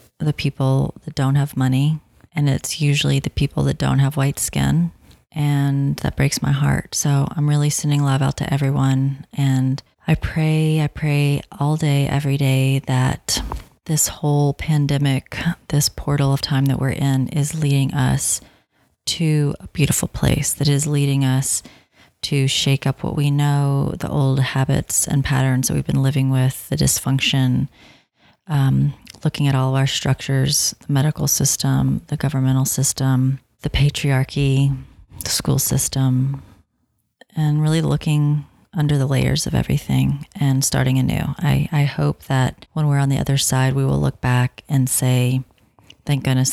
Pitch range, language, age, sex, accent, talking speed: 130-145 Hz, English, 30-49, female, American, 160 wpm